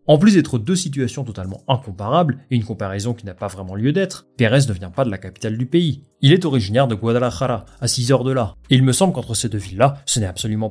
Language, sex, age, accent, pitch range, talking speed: French, male, 30-49, French, 105-145 Hz, 260 wpm